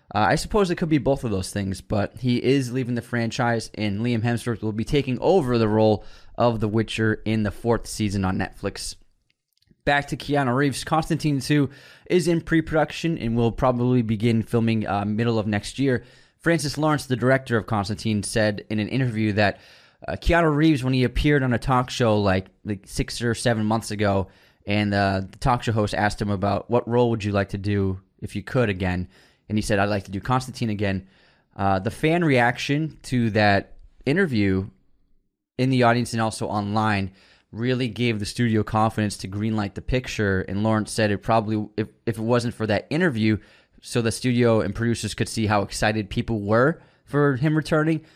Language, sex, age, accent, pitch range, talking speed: English, male, 20-39, American, 105-130 Hz, 195 wpm